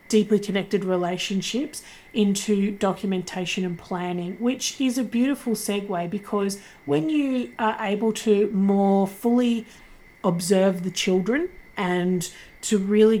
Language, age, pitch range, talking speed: English, 40-59, 180-215 Hz, 120 wpm